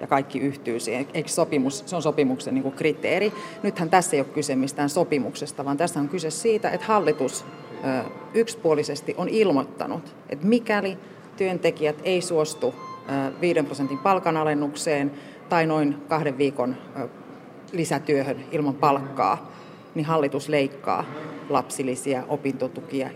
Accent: native